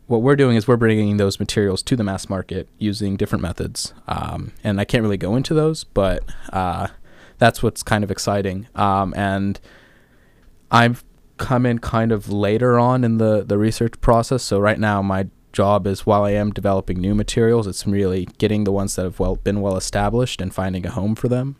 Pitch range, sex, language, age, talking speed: 95-110 Hz, male, English, 20-39, 205 wpm